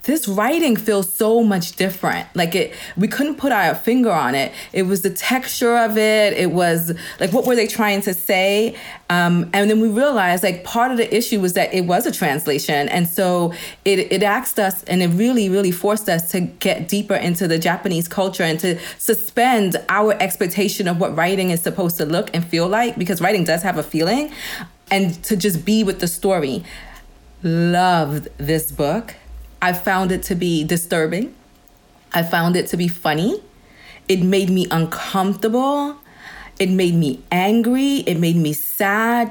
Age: 30-49